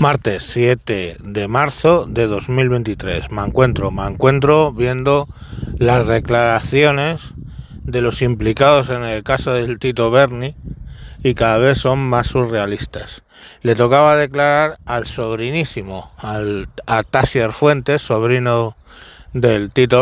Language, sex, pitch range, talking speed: Spanish, male, 115-140 Hz, 120 wpm